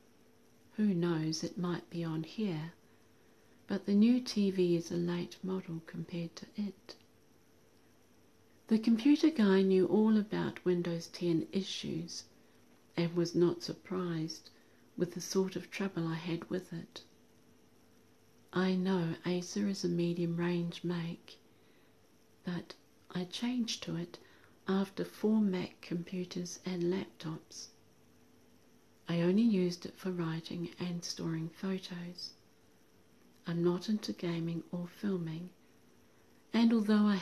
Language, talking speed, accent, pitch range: English, 125 wpm, British, 170-195 Hz